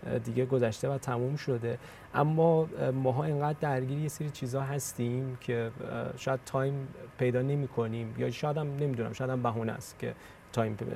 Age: 30-49